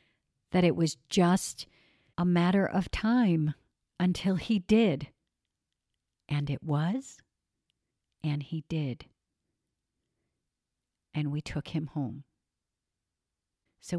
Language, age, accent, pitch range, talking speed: English, 50-69, American, 150-180 Hz, 100 wpm